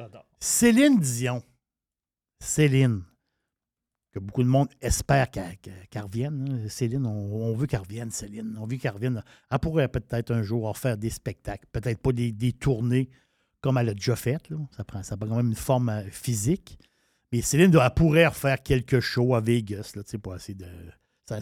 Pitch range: 120-165 Hz